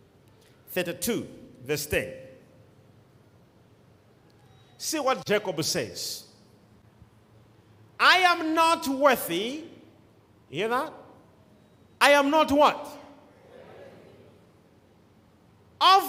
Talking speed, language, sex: 70 wpm, English, male